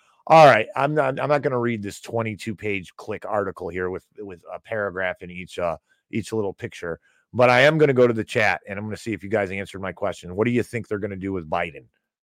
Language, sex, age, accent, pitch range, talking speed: English, male, 50-69, American, 100-125 Hz, 260 wpm